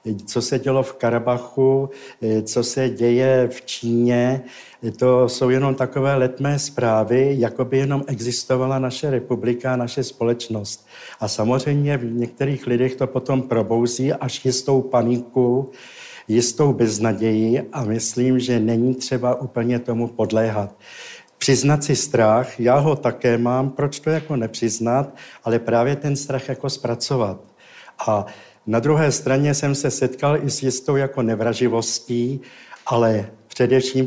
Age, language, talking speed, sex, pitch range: 60-79, Czech, 135 wpm, male, 115-130 Hz